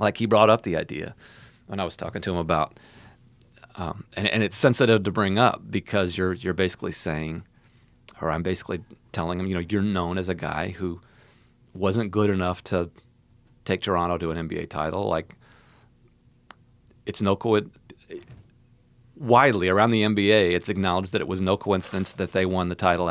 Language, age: English, 40-59